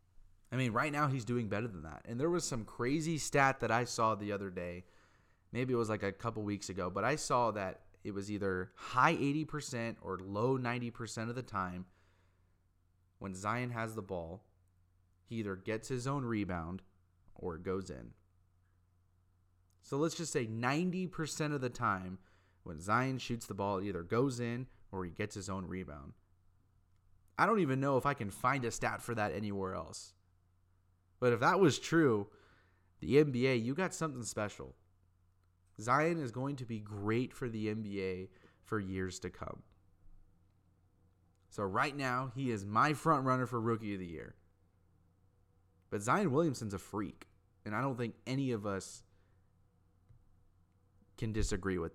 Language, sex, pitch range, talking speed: English, male, 90-125 Hz, 170 wpm